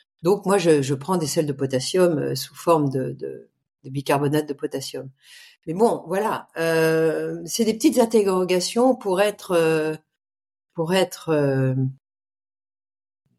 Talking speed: 135 wpm